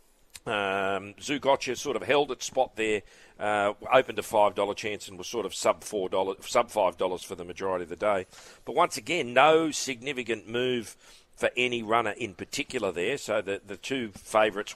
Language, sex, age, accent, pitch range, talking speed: English, male, 40-59, Australian, 100-125 Hz, 185 wpm